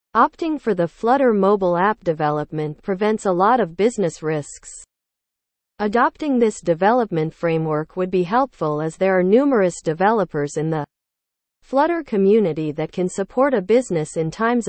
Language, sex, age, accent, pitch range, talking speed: English, female, 40-59, American, 160-235 Hz, 145 wpm